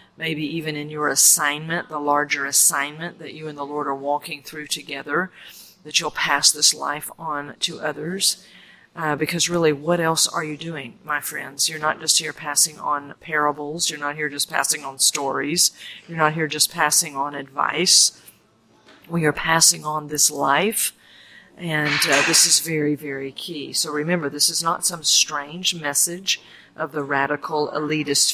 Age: 40-59